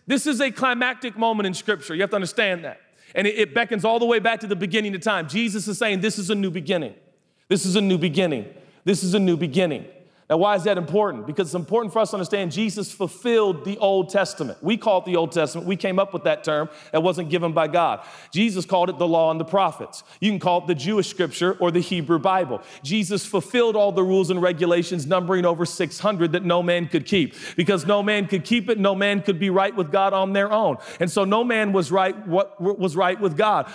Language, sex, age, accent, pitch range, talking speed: English, male, 40-59, American, 185-225 Hz, 245 wpm